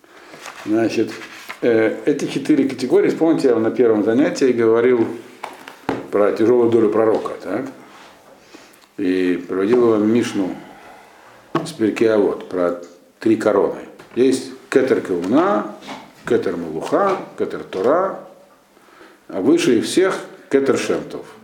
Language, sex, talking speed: Russian, male, 90 wpm